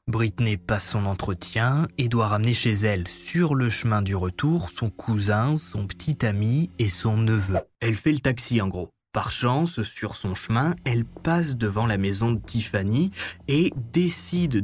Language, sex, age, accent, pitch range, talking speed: French, male, 20-39, French, 100-120 Hz, 170 wpm